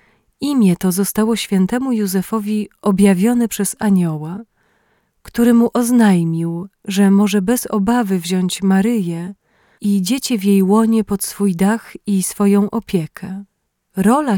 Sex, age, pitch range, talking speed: female, 30-49, 190-225 Hz, 120 wpm